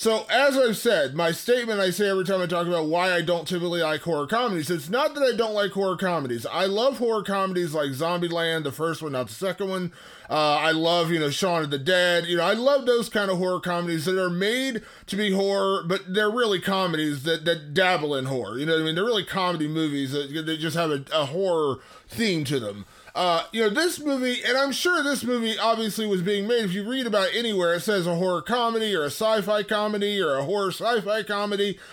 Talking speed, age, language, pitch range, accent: 240 wpm, 20-39, English, 170-220 Hz, American